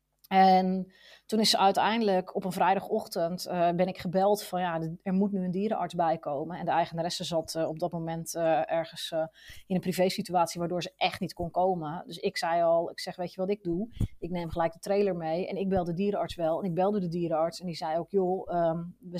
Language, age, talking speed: Dutch, 30-49, 240 wpm